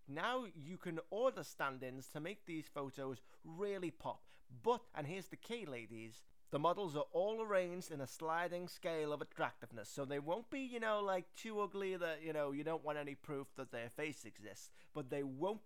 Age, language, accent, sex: 20-39, English, British, male